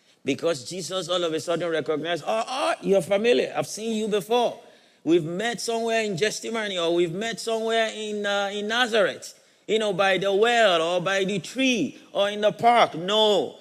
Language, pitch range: English, 150-210 Hz